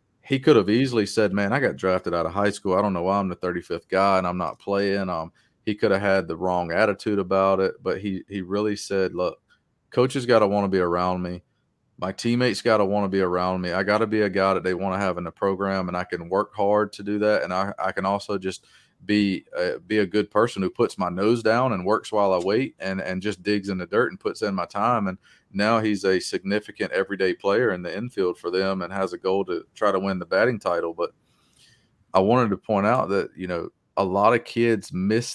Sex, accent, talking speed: male, American, 255 wpm